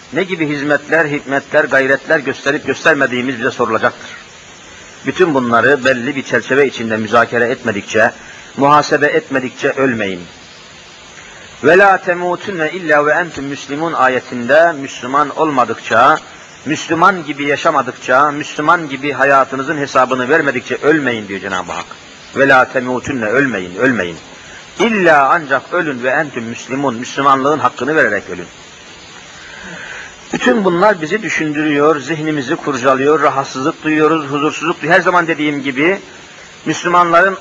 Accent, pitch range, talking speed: native, 135-165 Hz, 110 wpm